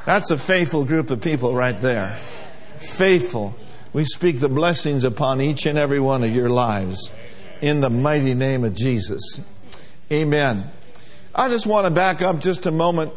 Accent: American